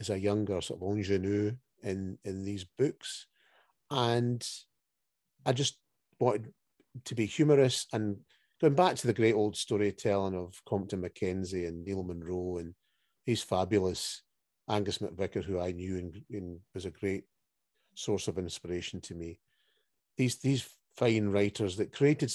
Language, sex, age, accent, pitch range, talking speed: English, male, 40-59, British, 95-115 Hz, 145 wpm